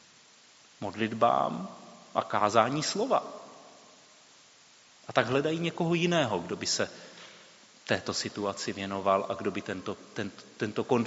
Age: 30-49